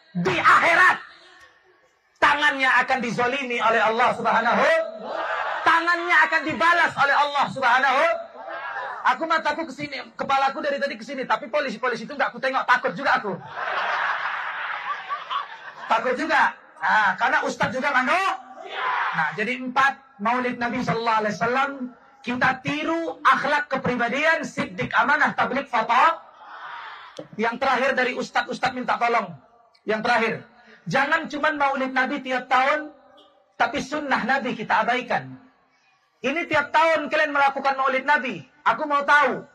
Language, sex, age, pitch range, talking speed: Indonesian, male, 30-49, 240-315 Hz, 125 wpm